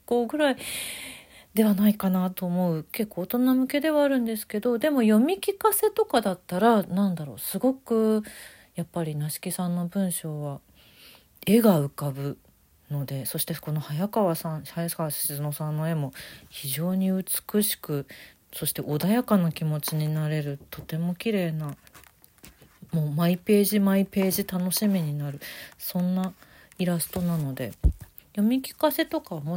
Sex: female